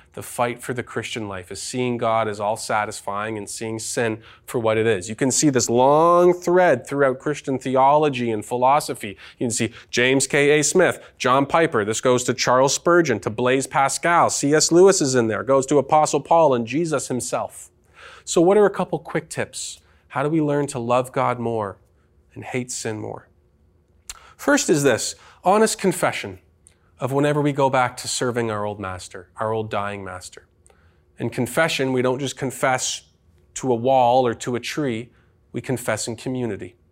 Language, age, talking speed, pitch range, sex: English, 30-49, 185 wpm, 105-135 Hz, male